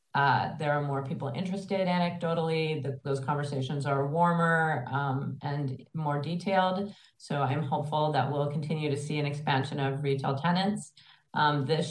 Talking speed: 150 wpm